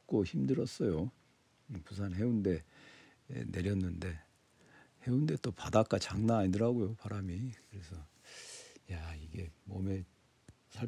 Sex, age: male, 50-69